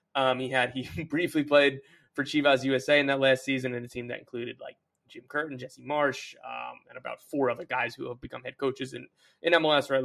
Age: 20-39